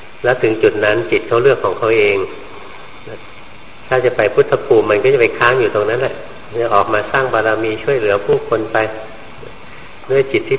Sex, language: male, Thai